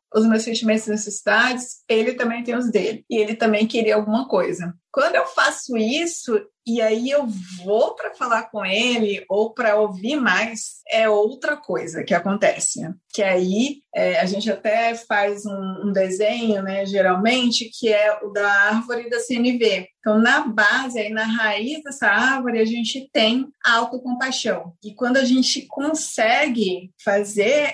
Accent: Brazilian